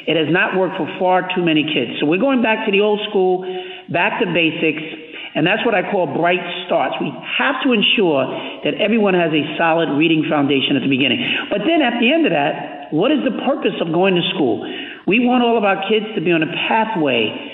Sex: male